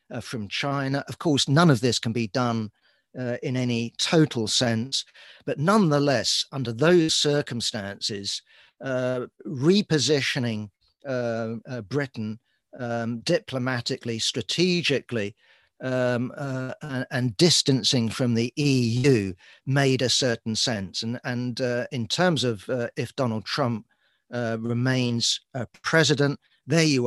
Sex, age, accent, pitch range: male, 50-69, British, 115-135 Hz